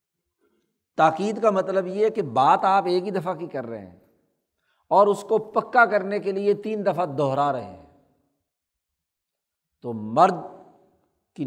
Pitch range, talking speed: 145-200 Hz, 150 wpm